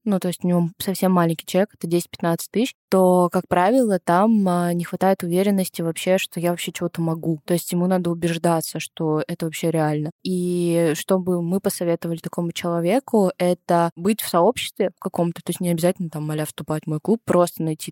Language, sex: Russian, female